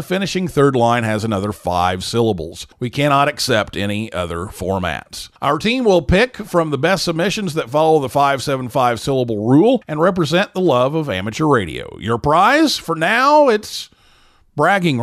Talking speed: 160 wpm